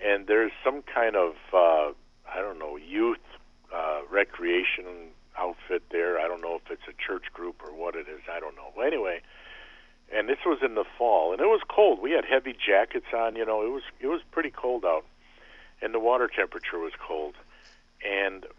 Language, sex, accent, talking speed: English, male, American, 195 wpm